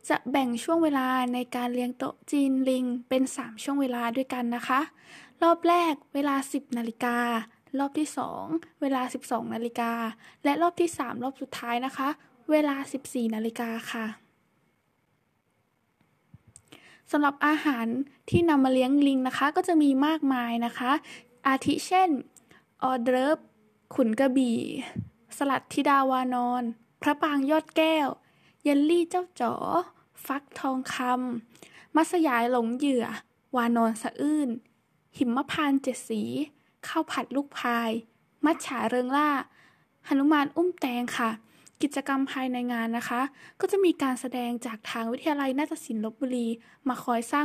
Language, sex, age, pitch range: Thai, female, 10-29, 240-290 Hz